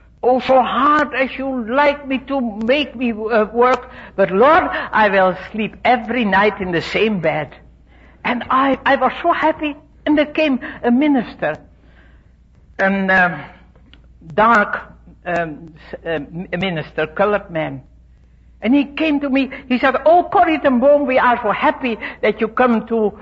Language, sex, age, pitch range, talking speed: English, female, 60-79, 185-265 Hz, 150 wpm